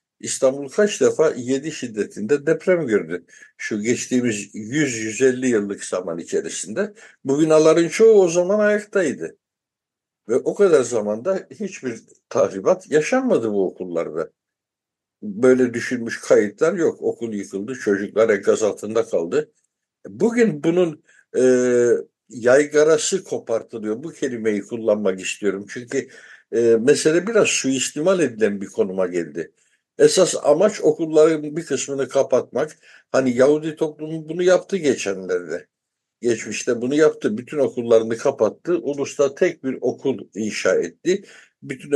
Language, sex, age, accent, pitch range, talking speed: Turkish, male, 60-79, native, 115-185 Hz, 115 wpm